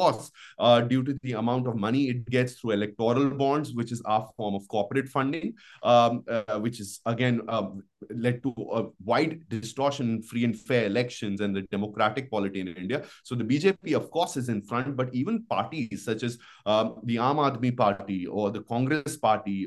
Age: 30-49